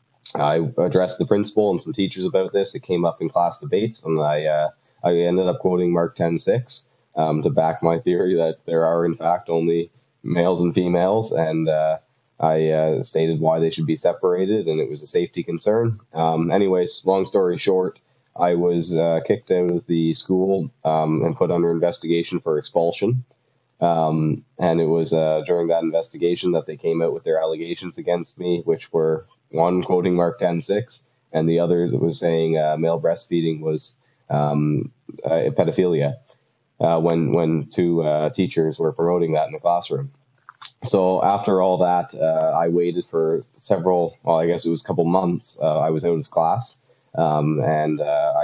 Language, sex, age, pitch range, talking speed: English, male, 20-39, 80-90 Hz, 185 wpm